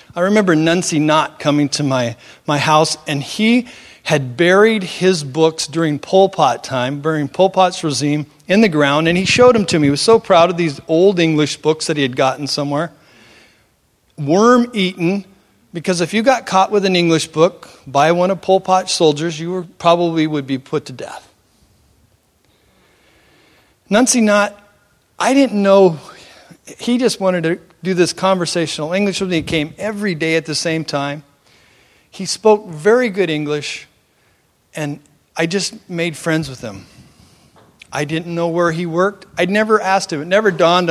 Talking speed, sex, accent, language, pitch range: 170 wpm, male, American, English, 140-185 Hz